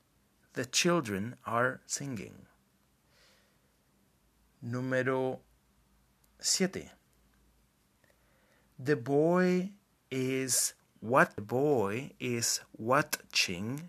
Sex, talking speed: male, 60 wpm